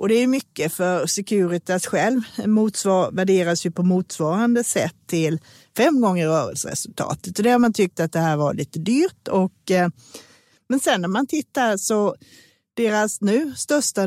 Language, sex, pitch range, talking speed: Swedish, female, 165-200 Hz, 165 wpm